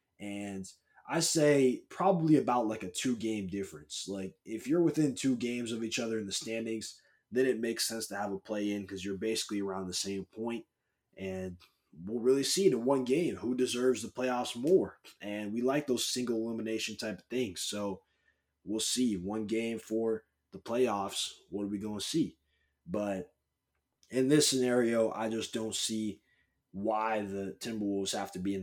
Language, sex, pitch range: English, male, 100-125 Hz